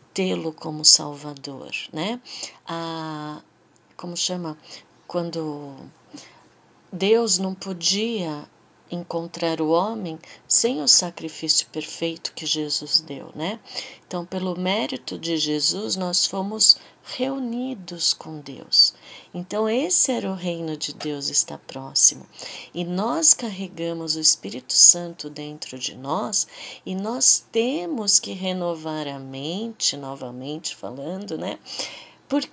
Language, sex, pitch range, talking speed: Portuguese, female, 160-225 Hz, 115 wpm